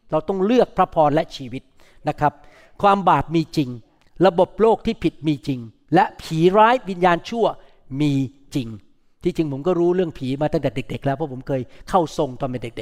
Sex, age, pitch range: male, 60-79, 145-205 Hz